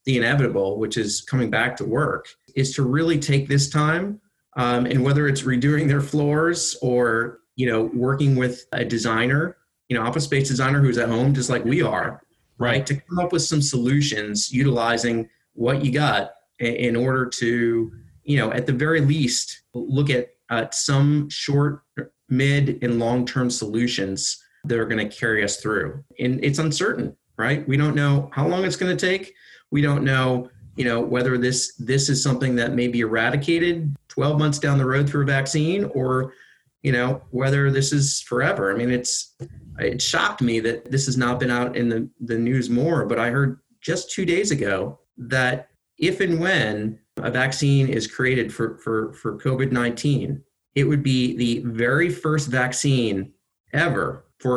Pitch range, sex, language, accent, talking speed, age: 120-140 Hz, male, English, American, 180 wpm, 30-49